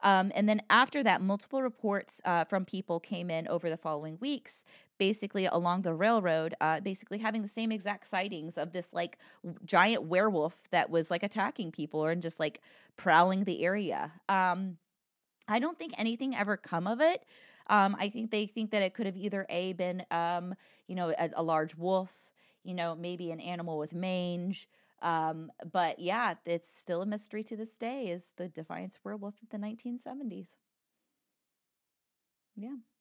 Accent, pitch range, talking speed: American, 175-225 Hz, 175 wpm